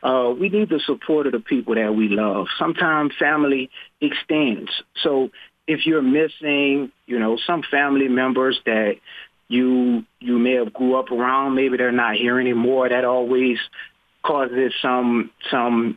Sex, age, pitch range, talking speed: male, 30-49, 120-150 Hz, 160 wpm